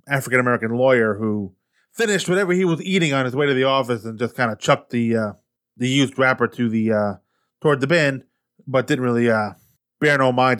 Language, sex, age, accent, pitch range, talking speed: English, male, 20-39, American, 115-135 Hz, 210 wpm